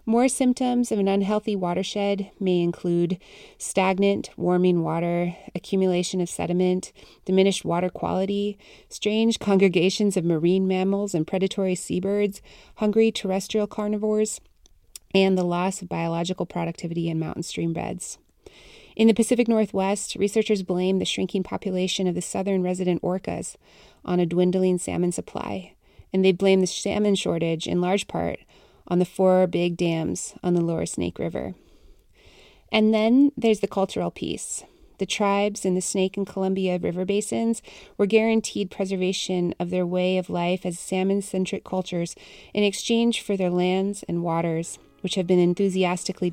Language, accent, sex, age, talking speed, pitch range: English, American, female, 30-49, 145 wpm, 175-200 Hz